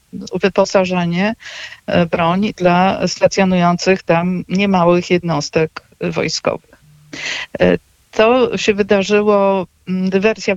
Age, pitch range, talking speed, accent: 50-69, 175-200 Hz, 70 wpm, native